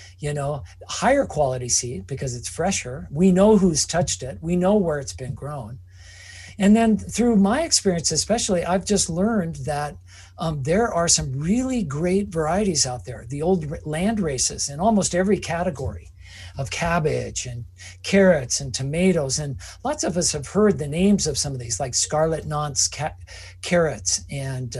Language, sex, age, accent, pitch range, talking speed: English, male, 50-69, American, 125-195 Hz, 170 wpm